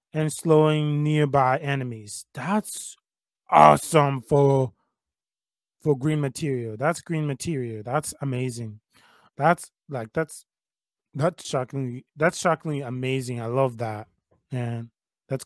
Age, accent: 20-39, American